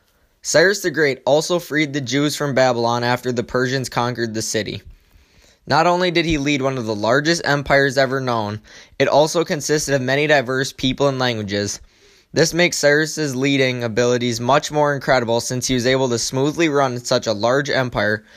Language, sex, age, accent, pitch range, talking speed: English, male, 10-29, American, 115-145 Hz, 180 wpm